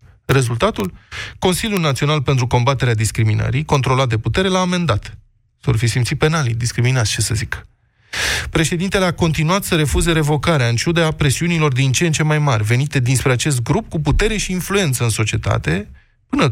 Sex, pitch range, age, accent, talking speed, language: male, 115-155 Hz, 20-39, native, 165 wpm, Romanian